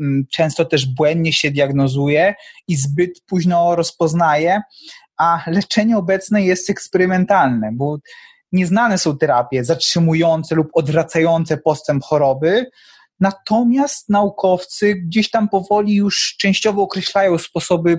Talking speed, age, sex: 105 wpm, 20-39, male